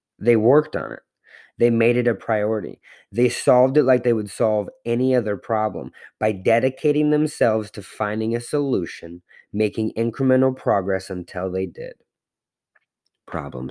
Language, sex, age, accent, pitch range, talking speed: English, male, 30-49, American, 95-125 Hz, 145 wpm